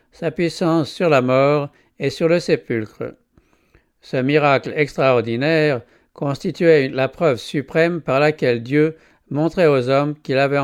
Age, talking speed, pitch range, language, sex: 60-79, 135 wpm, 130-165 Hz, English, male